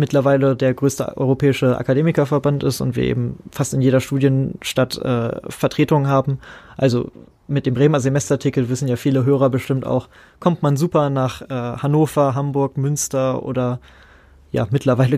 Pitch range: 125-140 Hz